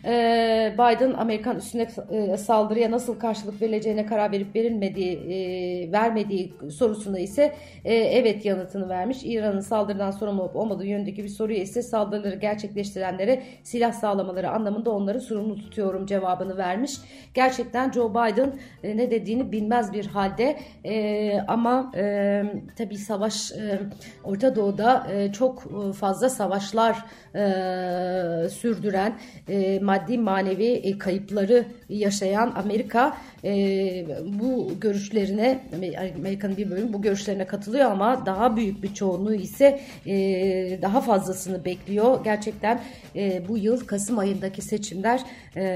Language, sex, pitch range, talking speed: Turkish, female, 190-230 Hz, 110 wpm